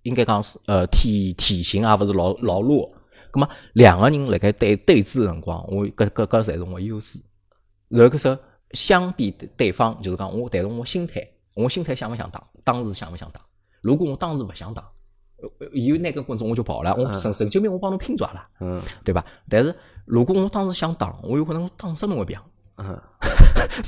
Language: Chinese